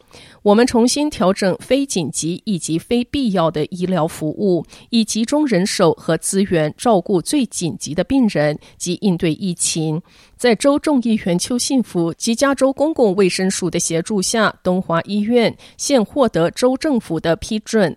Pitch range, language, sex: 165-235 Hz, Chinese, female